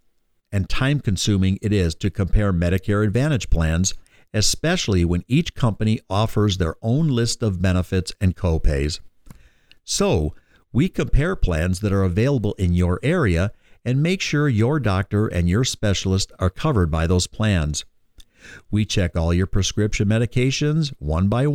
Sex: male